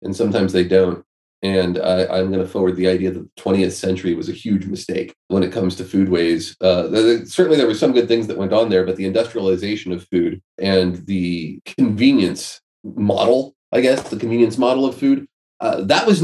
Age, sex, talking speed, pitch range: 30-49, male, 205 wpm, 95-120 Hz